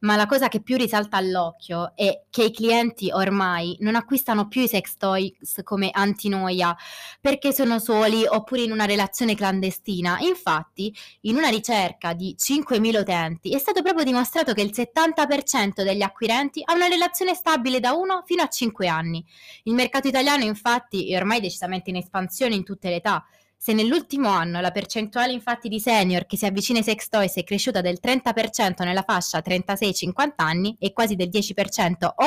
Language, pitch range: Italian, 185-240 Hz